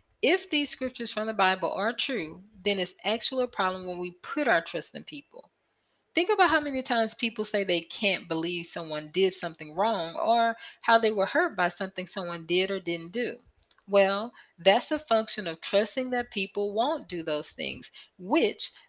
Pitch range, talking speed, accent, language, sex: 190-265 Hz, 185 wpm, American, English, female